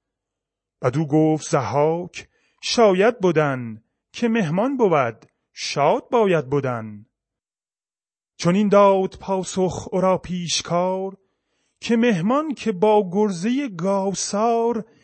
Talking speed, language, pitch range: 90 wpm, Persian, 165-225 Hz